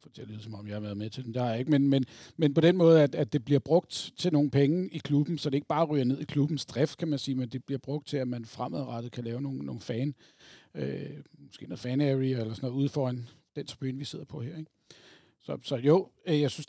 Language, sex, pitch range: Danish, male, 130-150 Hz